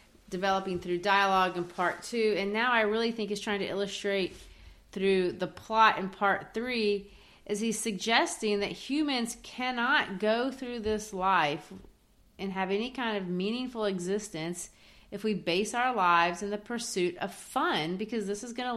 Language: English